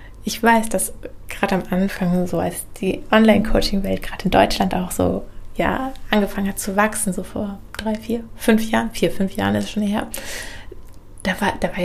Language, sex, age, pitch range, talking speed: German, female, 20-39, 185-215 Hz, 180 wpm